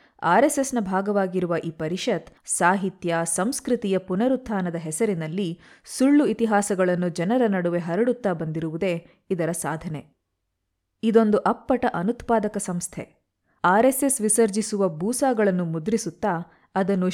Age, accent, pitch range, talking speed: 20-39, native, 170-225 Hz, 90 wpm